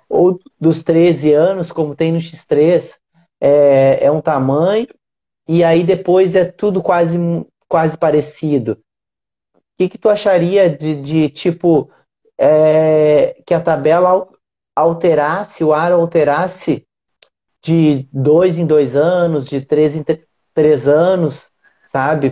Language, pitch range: Portuguese, 150-180 Hz